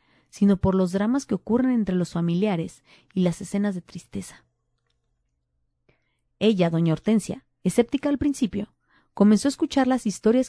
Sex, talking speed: female, 145 wpm